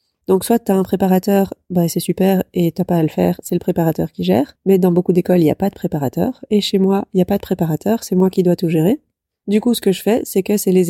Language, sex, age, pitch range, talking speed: French, female, 20-39, 180-205 Hz, 295 wpm